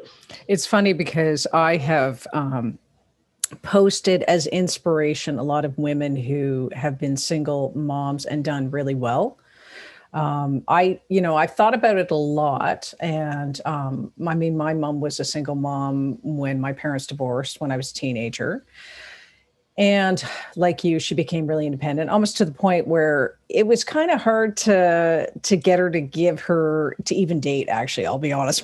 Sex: female